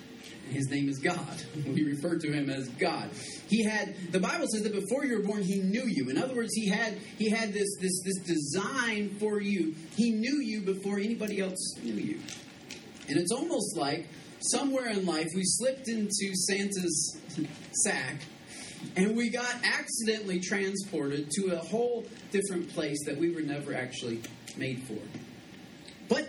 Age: 30-49